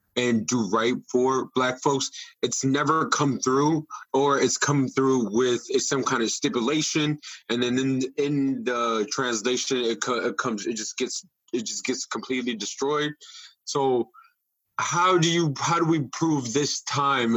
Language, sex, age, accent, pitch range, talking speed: English, male, 20-39, American, 125-155 Hz, 160 wpm